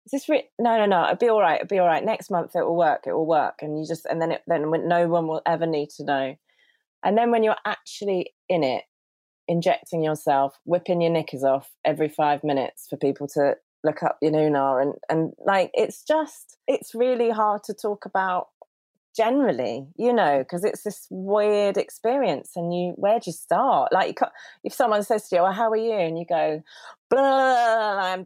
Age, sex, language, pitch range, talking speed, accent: 30-49, female, English, 155-210 Hz, 210 wpm, British